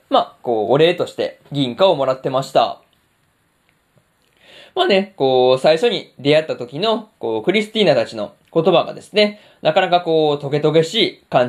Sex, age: male, 20-39